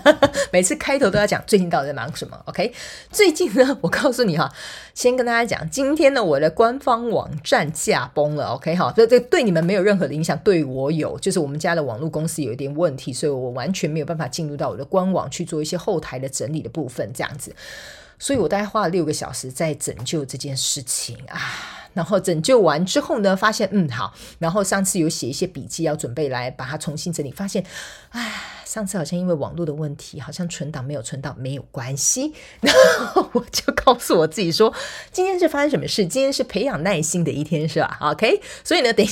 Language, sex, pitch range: Chinese, female, 150-210 Hz